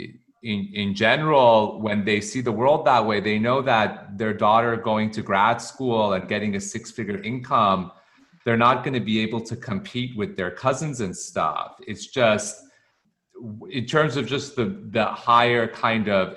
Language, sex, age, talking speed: English, male, 30-49, 175 wpm